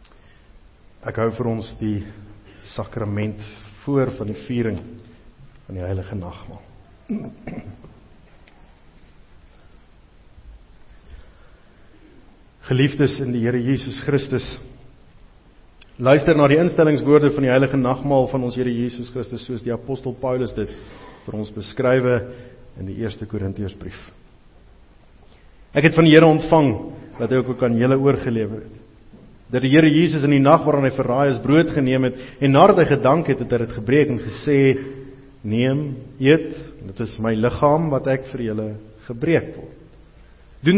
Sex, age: male, 50-69